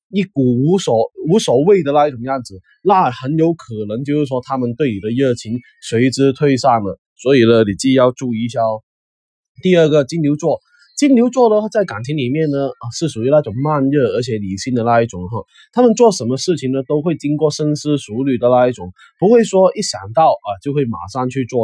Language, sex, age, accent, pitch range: Chinese, male, 20-39, native, 120-170 Hz